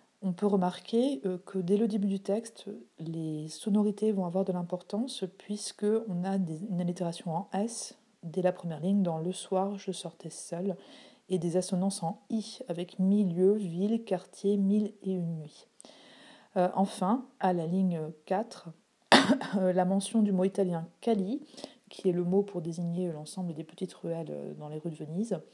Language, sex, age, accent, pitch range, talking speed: French, female, 40-59, French, 180-215 Hz, 170 wpm